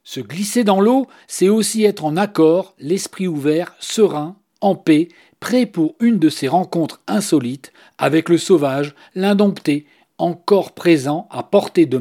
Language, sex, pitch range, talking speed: French, male, 155-220 Hz, 150 wpm